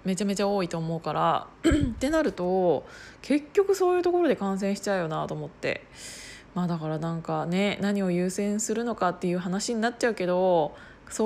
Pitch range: 180-220 Hz